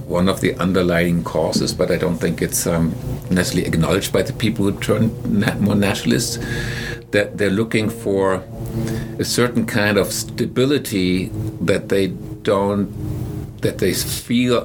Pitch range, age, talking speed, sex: 90-120 Hz, 60-79, 145 wpm, male